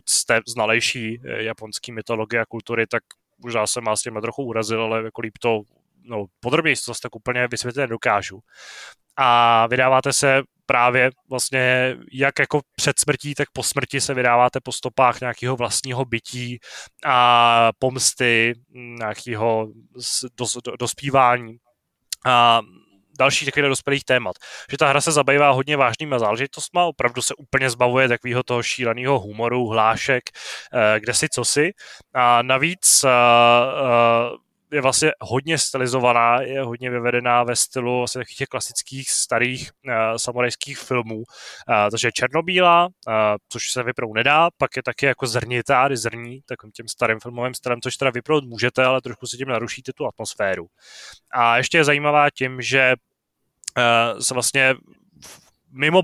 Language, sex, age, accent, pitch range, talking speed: Czech, male, 20-39, native, 115-135 Hz, 135 wpm